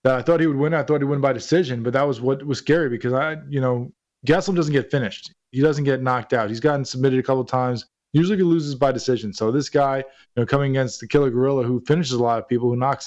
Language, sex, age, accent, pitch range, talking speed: English, male, 20-39, American, 130-155 Hz, 280 wpm